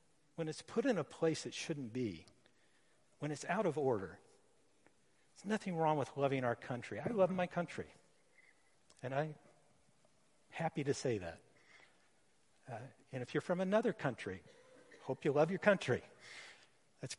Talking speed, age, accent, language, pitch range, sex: 155 wpm, 50-69, American, English, 120-160 Hz, male